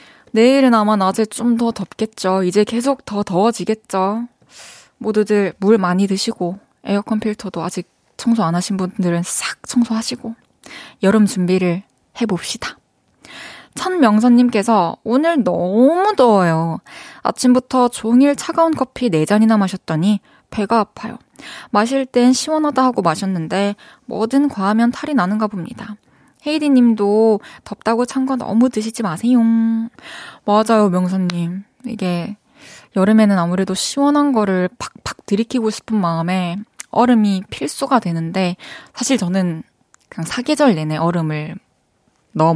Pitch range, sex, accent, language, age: 185-240 Hz, female, native, Korean, 20-39